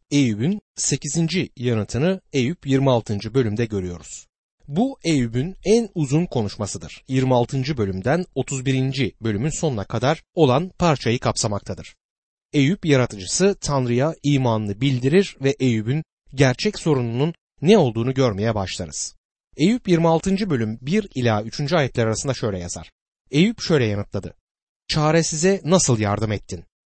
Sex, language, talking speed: male, Turkish, 115 wpm